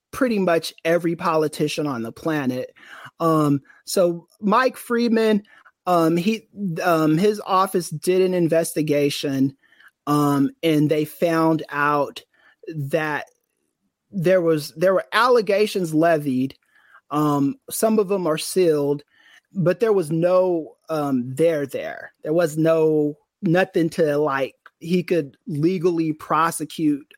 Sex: male